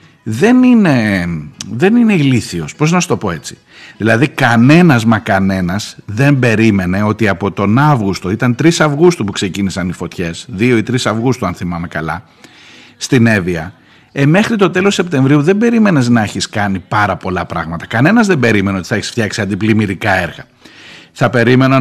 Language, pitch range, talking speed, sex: Greek, 105-145 Hz, 170 wpm, male